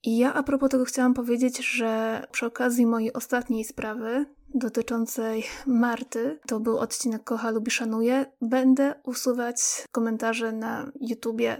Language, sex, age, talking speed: Polish, female, 20-39, 135 wpm